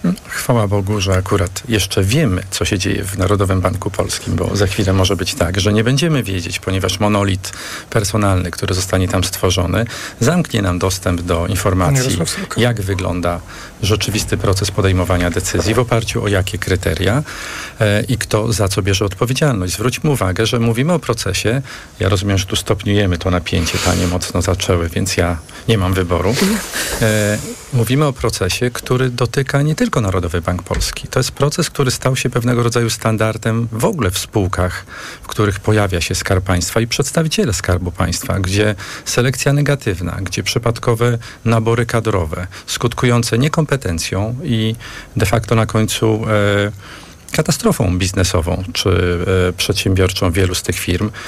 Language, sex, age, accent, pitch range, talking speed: Polish, male, 40-59, native, 95-125 Hz, 150 wpm